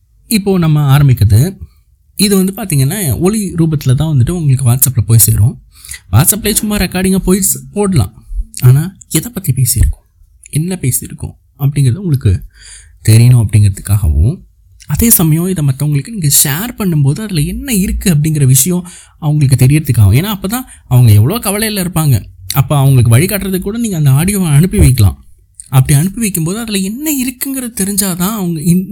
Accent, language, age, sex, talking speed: native, Tamil, 20-39, male, 140 wpm